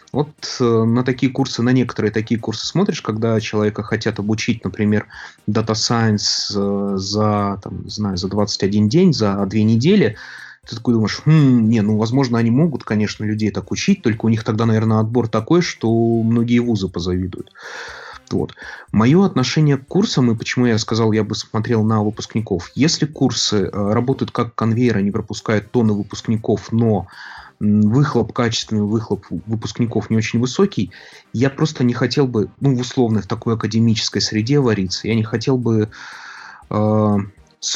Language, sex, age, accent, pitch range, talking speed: Russian, male, 30-49, native, 105-120 Hz, 160 wpm